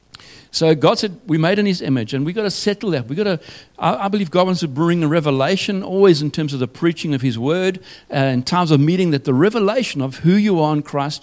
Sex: male